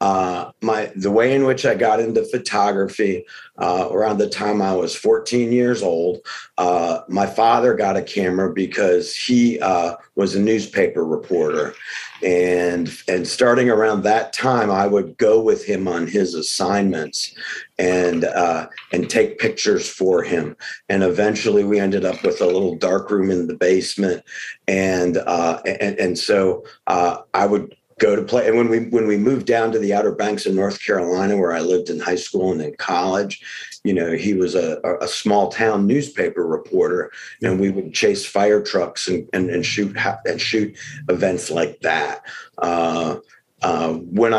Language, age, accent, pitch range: English, 50-69, American, 95-120 Hz